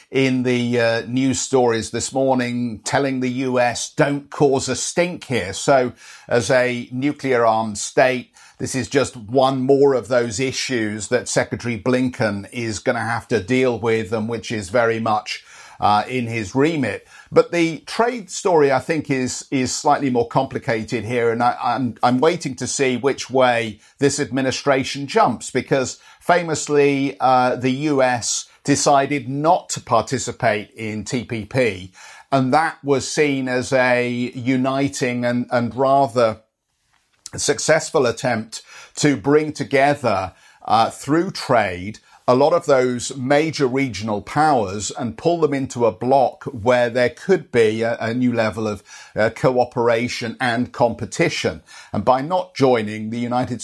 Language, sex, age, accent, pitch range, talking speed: English, male, 50-69, British, 115-135 Hz, 150 wpm